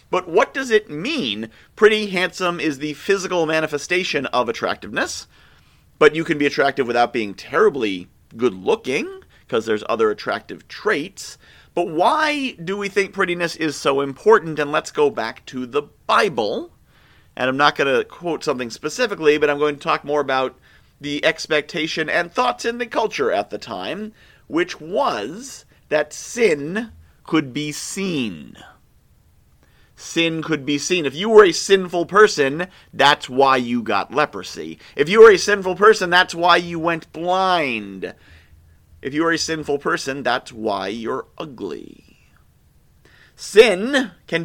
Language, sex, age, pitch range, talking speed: English, male, 40-59, 145-200 Hz, 155 wpm